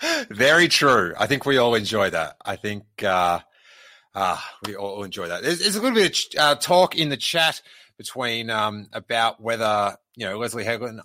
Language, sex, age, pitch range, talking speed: English, male, 30-49, 100-125 Hz, 190 wpm